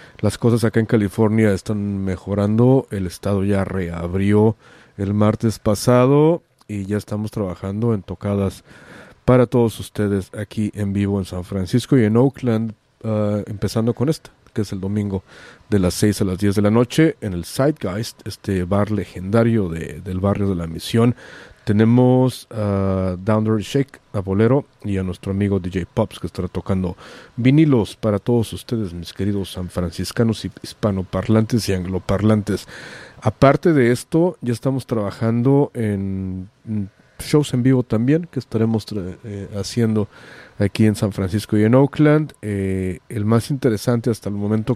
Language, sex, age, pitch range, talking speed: English, male, 40-59, 100-120 Hz, 155 wpm